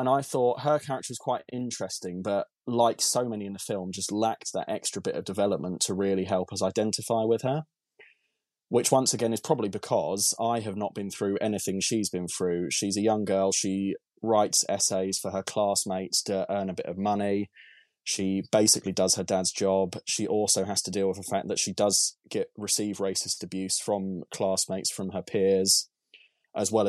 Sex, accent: male, British